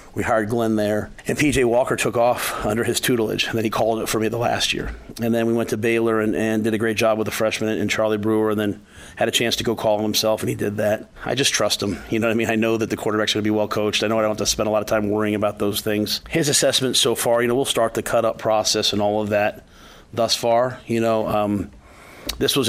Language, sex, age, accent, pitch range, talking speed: English, male, 30-49, American, 105-110 Hz, 290 wpm